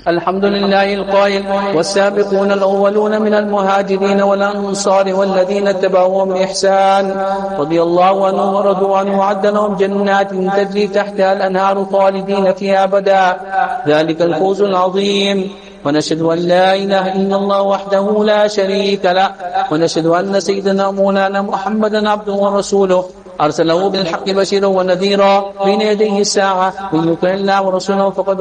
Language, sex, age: English, male, 50-69